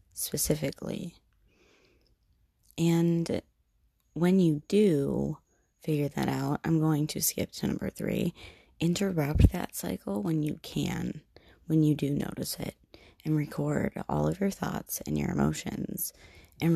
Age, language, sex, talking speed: 30-49, English, female, 130 wpm